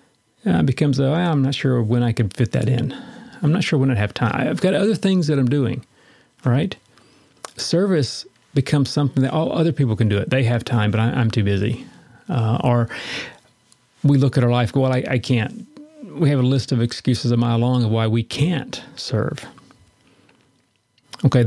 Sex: male